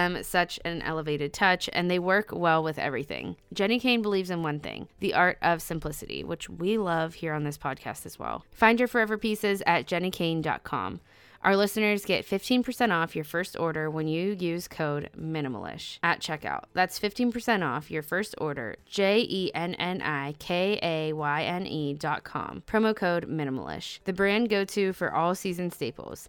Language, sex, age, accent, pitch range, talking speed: English, female, 20-39, American, 160-205 Hz, 155 wpm